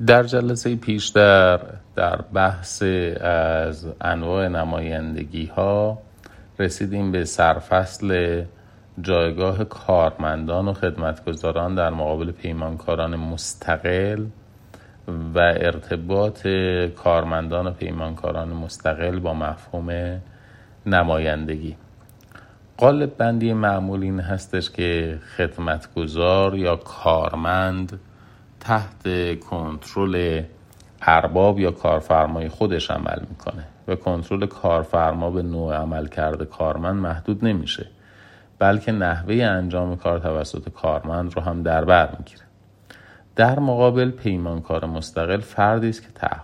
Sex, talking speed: male, 95 wpm